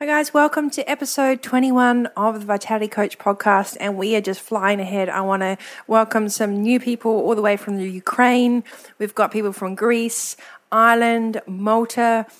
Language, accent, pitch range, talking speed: English, Australian, 185-215 Hz, 180 wpm